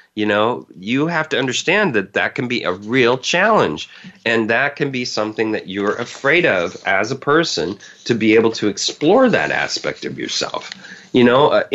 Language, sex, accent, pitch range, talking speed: English, male, American, 100-125 Hz, 190 wpm